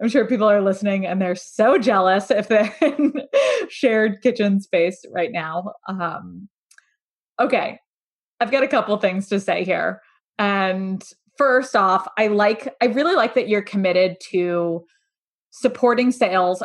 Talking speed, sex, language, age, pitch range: 150 wpm, female, English, 20-39, 185-245 Hz